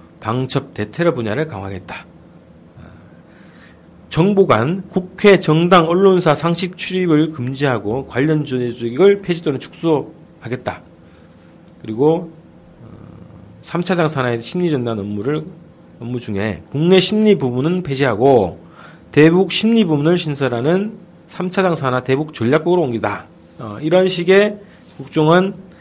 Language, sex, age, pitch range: Korean, male, 40-59, 115-180 Hz